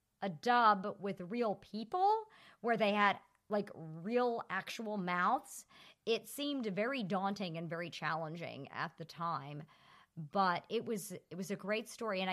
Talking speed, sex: 150 wpm, male